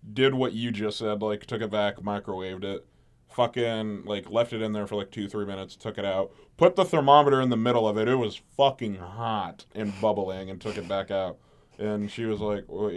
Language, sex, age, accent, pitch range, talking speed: English, male, 20-39, American, 95-120 Hz, 225 wpm